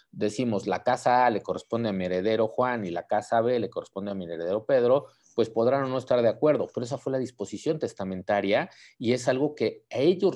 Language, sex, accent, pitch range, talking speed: Spanish, male, Mexican, 100-140 Hz, 220 wpm